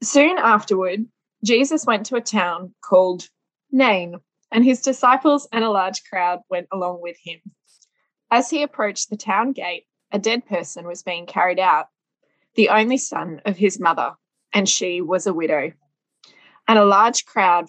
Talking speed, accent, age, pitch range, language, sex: 165 wpm, Australian, 20-39, 170-220 Hz, English, female